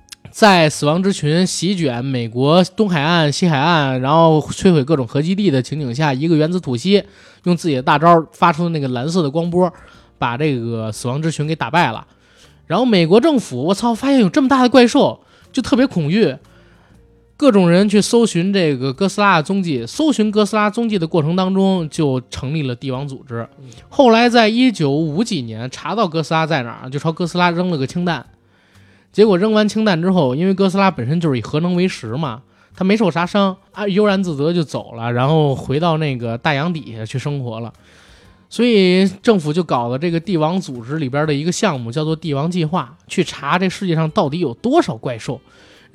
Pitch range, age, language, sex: 135-195 Hz, 20-39, Chinese, male